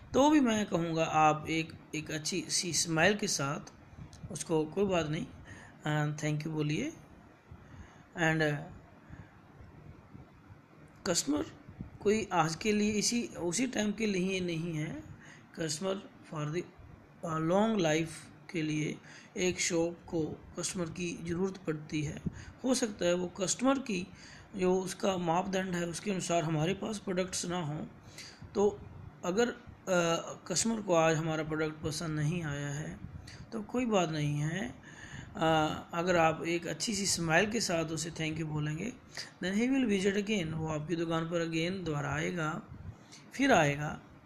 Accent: native